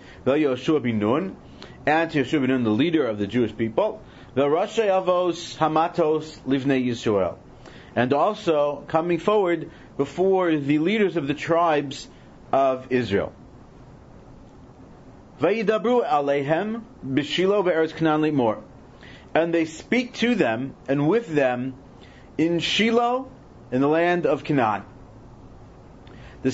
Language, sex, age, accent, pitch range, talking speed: English, male, 40-59, American, 125-165 Hz, 105 wpm